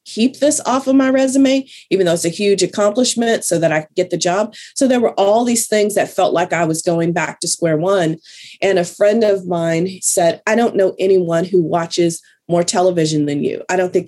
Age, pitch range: 30-49, 165-200 Hz